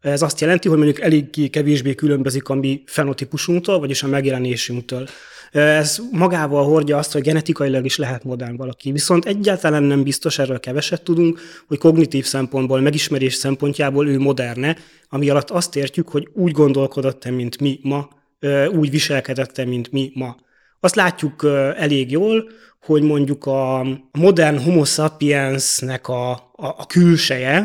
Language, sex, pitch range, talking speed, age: Hungarian, male, 130-155 Hz, 145 wpm, 30-49